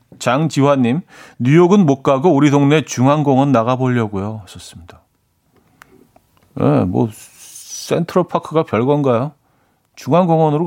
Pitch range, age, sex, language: 110-145 Hz, 40-59, male, Korean